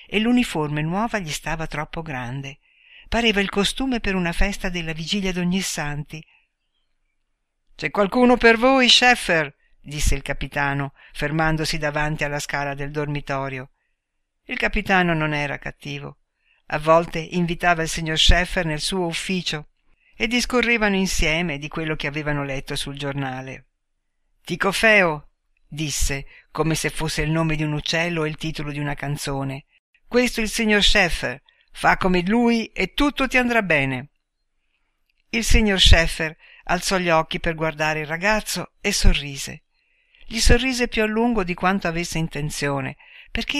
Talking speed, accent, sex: 145 wpm, native, female